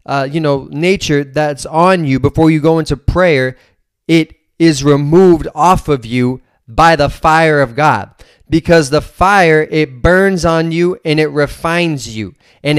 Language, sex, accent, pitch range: English, male, American, 140-165 Hz